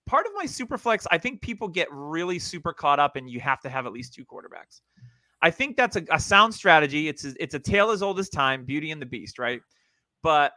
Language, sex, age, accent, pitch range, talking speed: English, male, 30-49, American, 135-195 Hz, 250 wpm